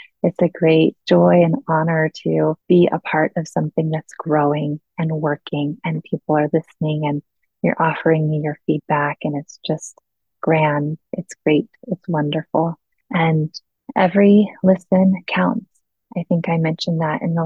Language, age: English, 20-39